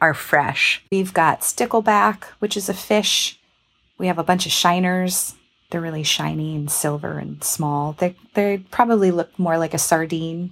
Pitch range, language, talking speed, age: 155-185 Hz, English, 170 wpm, 30-49